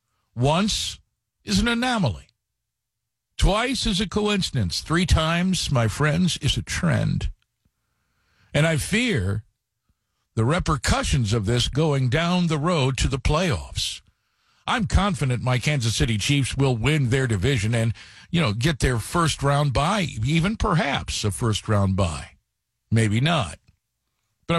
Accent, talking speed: American, 135 wpm